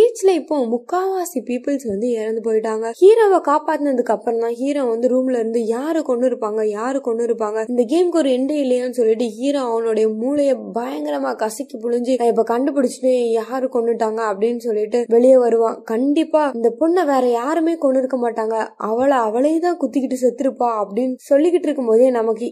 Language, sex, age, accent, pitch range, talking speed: Tamil, female, 20-39, native, 230-295 Hz, 110 wpm